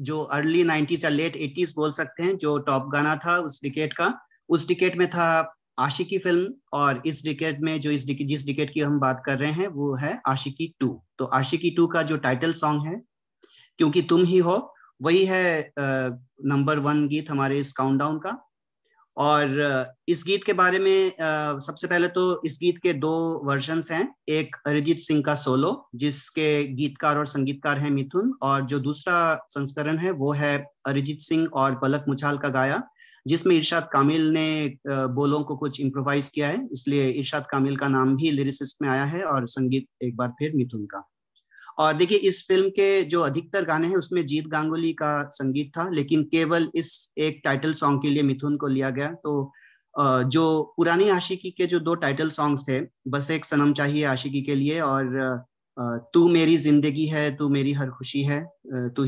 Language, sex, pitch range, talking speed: Hindi, male, 140-165 Hz, 185 wpm